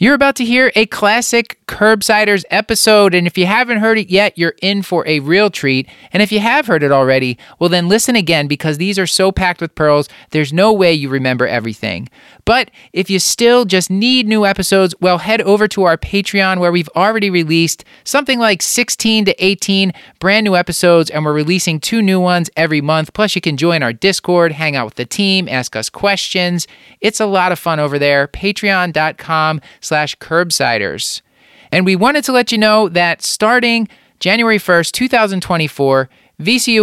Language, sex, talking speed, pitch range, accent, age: English, male, 185 wpm, 145-205 Hz, American, 30-49